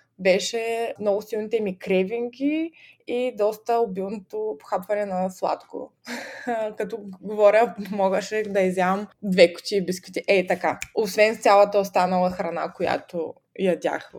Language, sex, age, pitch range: Bulgarian, female, 20-39, 200-255 Hz